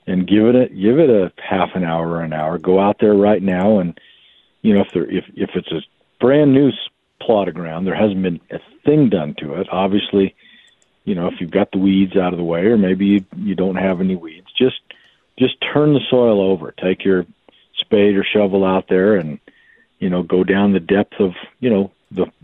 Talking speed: 220 wpm